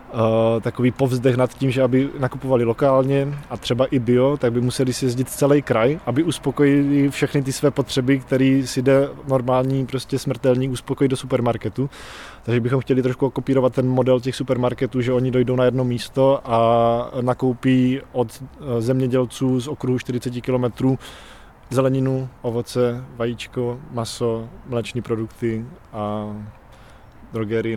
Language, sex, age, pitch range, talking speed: Czech, male, 20-39, 125-135 Hz, 140 wpm